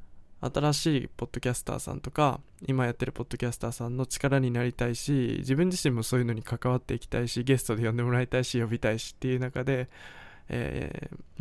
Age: 20-39